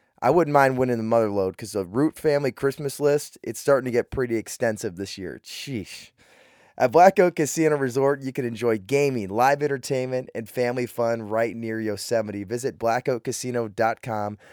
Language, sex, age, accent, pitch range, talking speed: English, male, 20-39, American, 110-140 Hz, 165 wpm